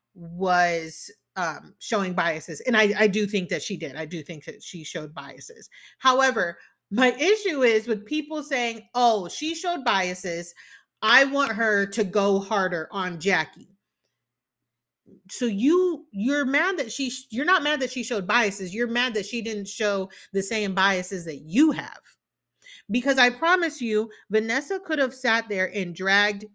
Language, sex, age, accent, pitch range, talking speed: English, female, 30-49, American, 190-270 Hz, 165 wpm